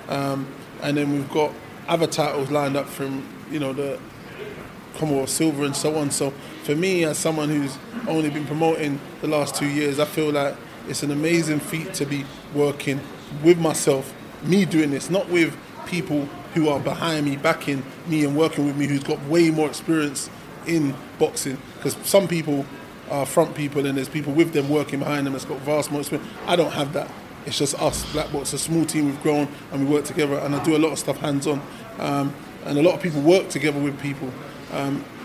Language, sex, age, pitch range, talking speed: English, male, 20-39, 140-155 Hz, 205 wpm